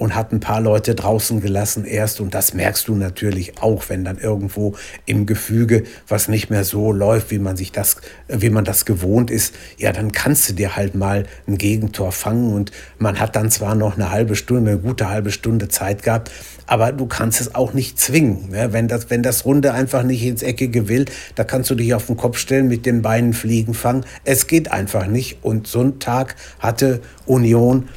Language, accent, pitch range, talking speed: German, German, 105-130 Hz, 210 wpm